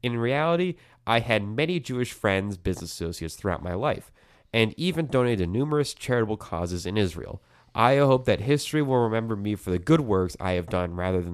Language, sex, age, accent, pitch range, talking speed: English, male, 30-49, American, 95-125 Hz, 195 wpm